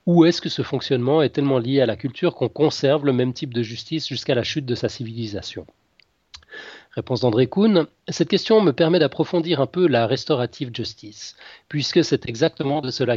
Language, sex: French, male